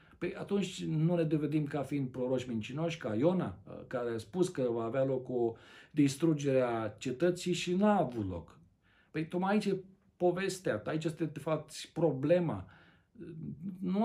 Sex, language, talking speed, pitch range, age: male, Romanian, 165 wpm, 110-160 Hz, 50-69